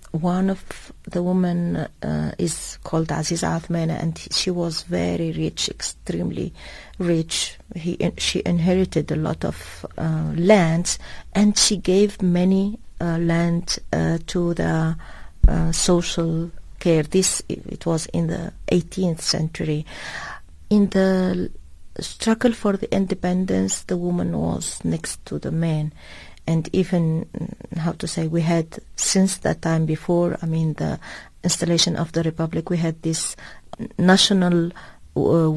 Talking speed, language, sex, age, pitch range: 135 wpm, English, female, 40-59, 165-195 Hz